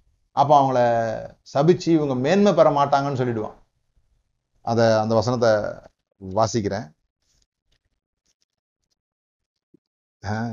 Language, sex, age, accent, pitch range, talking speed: Tamil, male, 30-49, native, 110-155 Hz, 70 wpm